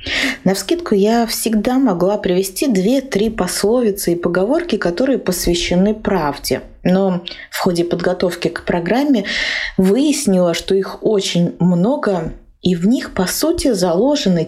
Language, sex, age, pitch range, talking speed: Russian, female, 20-39, 170-215 Hz, 125 wpm